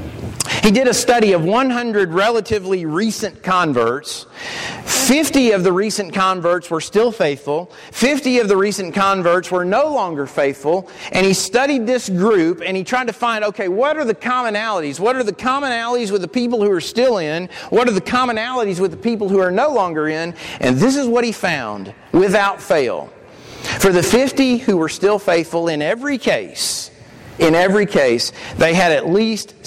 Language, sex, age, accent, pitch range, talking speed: English, male, 40-59, American, 155-230 Hz, 180 wpm